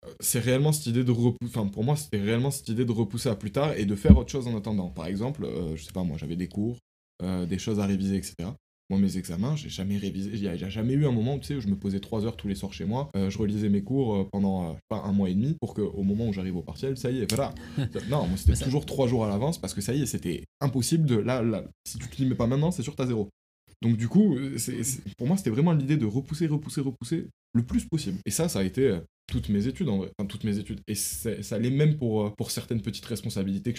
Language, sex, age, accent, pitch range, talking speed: French, male, 20-39, French, 100-130 Hz, 290 wpm